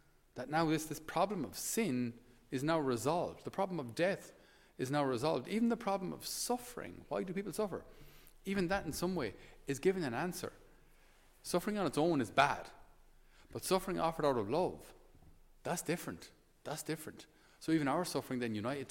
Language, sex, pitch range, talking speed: English, male, 115-160 Hz, 180 wpm